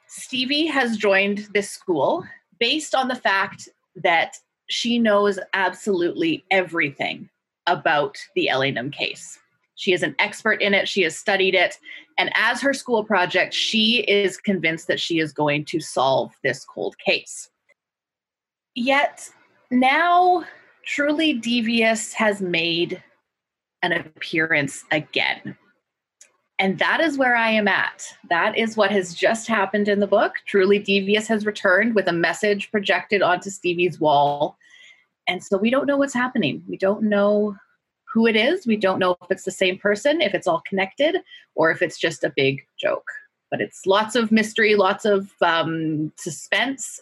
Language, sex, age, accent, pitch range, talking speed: English, female, 30-49, American, 185-240 Hz, 155 wpm